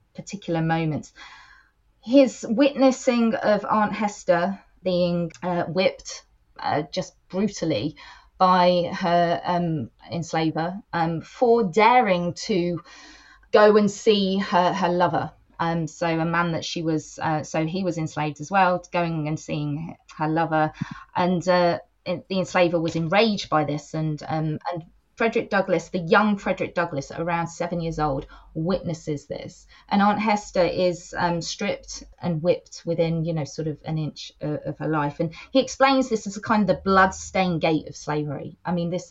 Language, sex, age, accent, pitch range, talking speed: English, female, 20-39, British, 165-210 Hz, 160 wpm